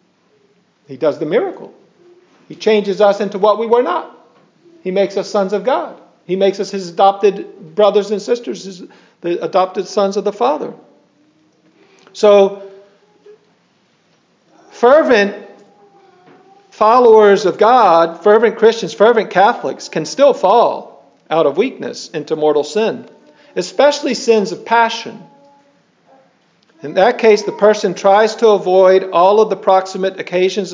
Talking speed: 130 wpm